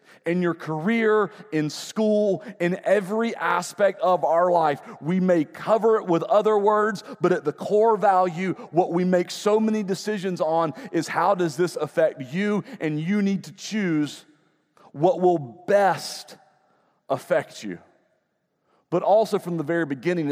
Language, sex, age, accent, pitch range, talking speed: English, male, 40-59, American, 135-190 Hz, 155 wpm